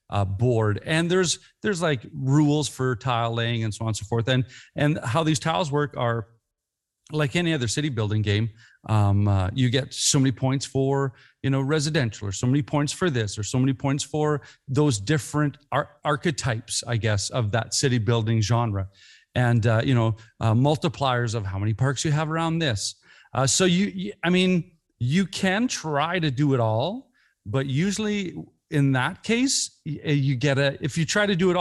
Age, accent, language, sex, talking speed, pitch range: 40-59, American, English, male, 190 wpm, 120-160 Hz